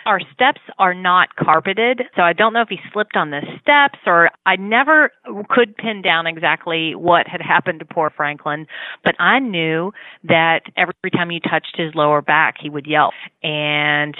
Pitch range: 155-190 Hz